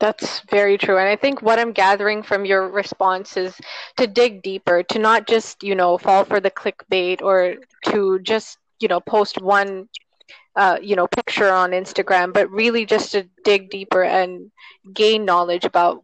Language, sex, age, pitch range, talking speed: English, female, 20-39, 185-225 Hz, 180 wpm